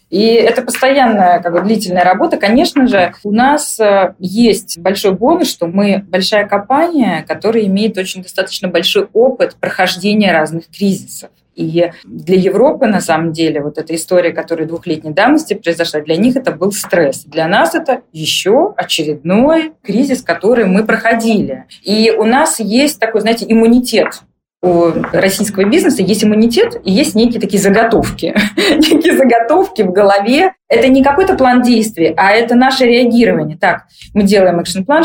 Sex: female